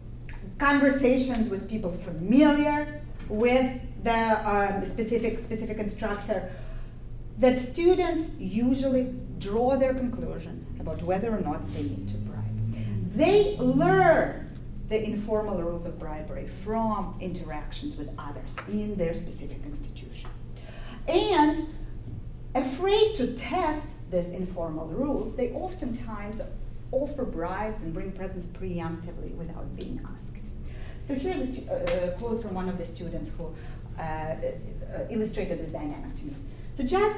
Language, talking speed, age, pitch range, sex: English, 125 wpm, 40-59, 165-255 Hz, female